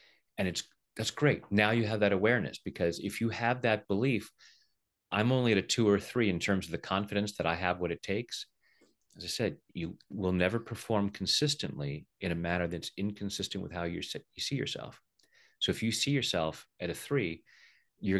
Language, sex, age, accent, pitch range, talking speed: English, male, 30-49, American, 85-105 Hz, 200 wpm